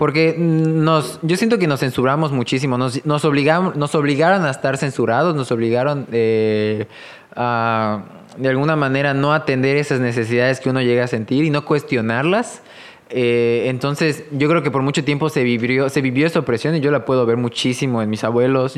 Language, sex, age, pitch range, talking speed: English, male, 20-39, 120-150 Hz, 185 wpm